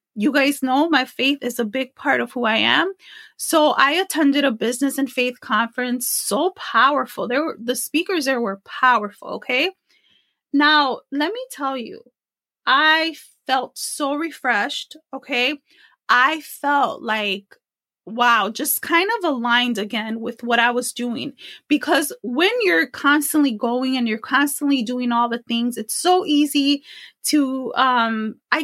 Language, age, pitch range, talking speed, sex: English, 20-39, 245-320 Hz, 150 wpm, female